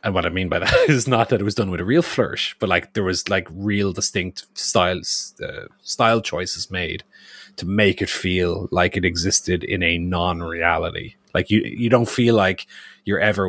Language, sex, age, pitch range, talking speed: English, male, 30-49, 90-105 Hz, 210 wpm